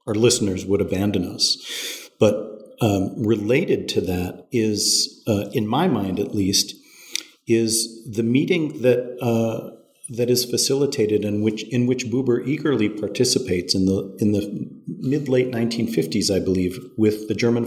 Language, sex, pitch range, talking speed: English, male, 100-125 Hz, 155 wpm